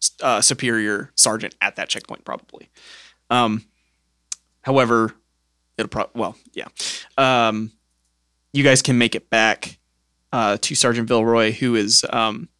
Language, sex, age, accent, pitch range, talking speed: English, male, 20-39, American, 105-130 Hz, 130 wpm